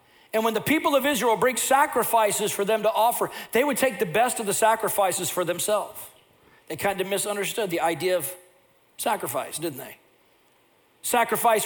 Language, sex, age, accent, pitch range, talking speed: English, male, 40-59, American, 210-265 Hz, 170 wpm